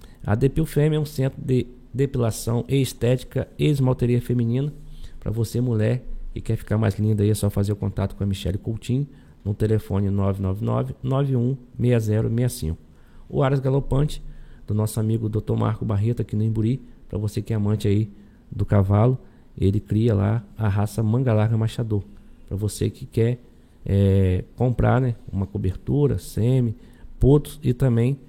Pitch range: 105-125 Hz